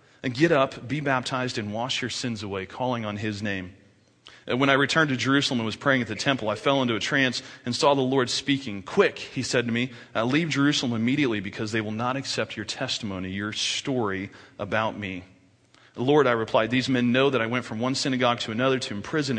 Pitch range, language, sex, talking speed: 110-140 Hz, English, male, 225 wpm